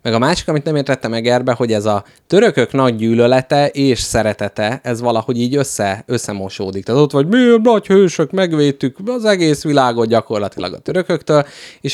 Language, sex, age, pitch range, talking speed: Hungarian, male, 30-49, 105-140 Hz, 165 wpm